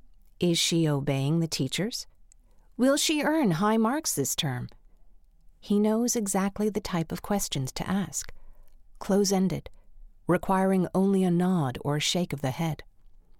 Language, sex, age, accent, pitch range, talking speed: English, female, 50-69, American, 140-200 Hz, 145 wpm